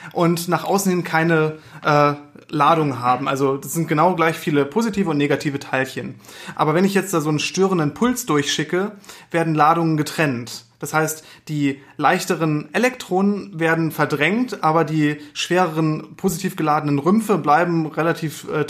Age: 30-49